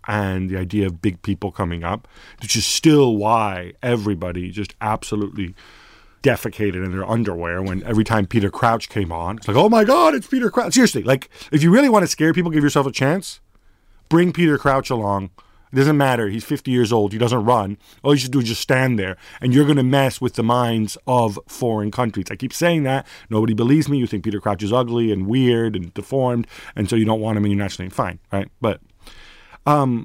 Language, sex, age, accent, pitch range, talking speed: English, male, 40-59, American, 100-135 Hz, 220 wpm